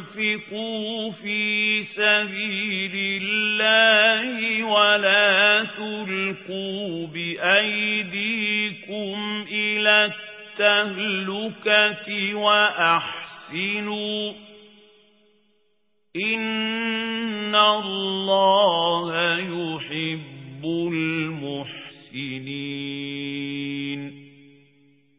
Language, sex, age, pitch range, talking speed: Arabic, male, 50-69, 190-210 Hz, 30 wpm